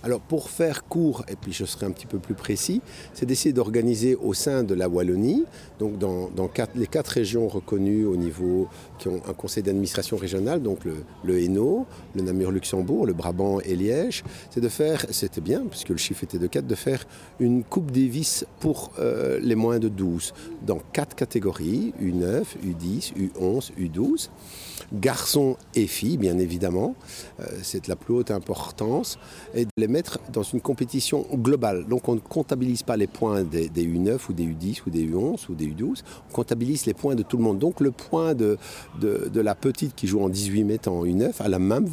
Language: French